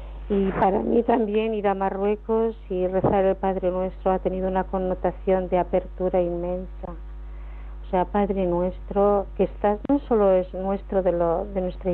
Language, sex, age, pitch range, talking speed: Spanish, female, 50-69, 180-200 Hz, 165 wpm